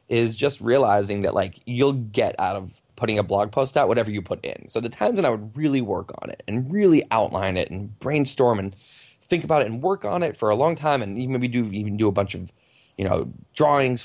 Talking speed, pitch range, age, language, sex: 245 wpm, 105-130 Hz, 20-39, English, male